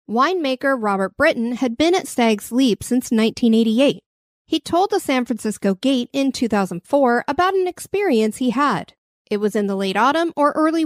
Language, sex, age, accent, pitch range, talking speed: English, female, 40-59, American, 220-335 Hz, 170 wpm